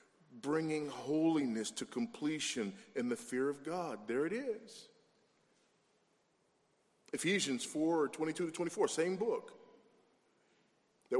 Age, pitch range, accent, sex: 40-59, 125-175 Hz, American, male